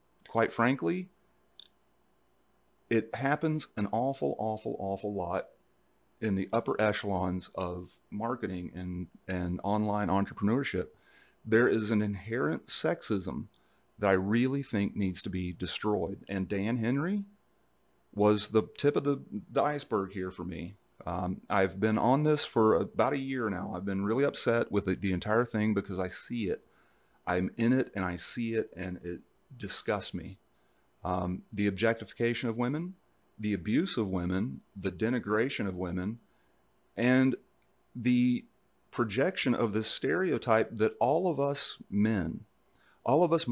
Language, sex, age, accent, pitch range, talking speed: English, male, 40-59, American, 95-130 Hz, 145 wpm